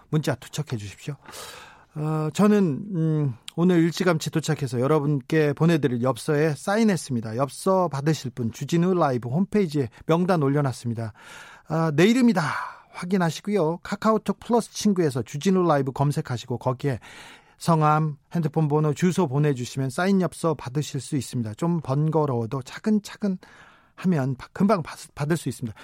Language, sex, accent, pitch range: Korean, male, native, 130-175 Hz